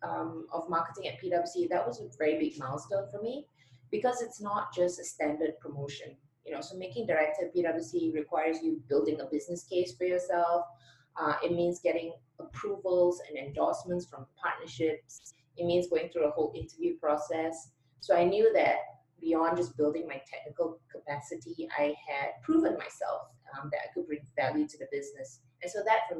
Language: English